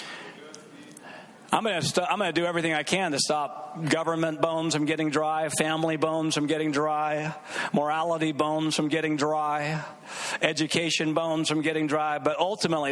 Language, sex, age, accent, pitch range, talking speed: English, male, 50-69, American, 155-205 Hz, 165 wpm